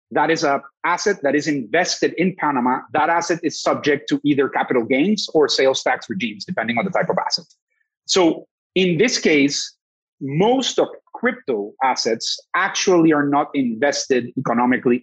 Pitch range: 140-210 Hz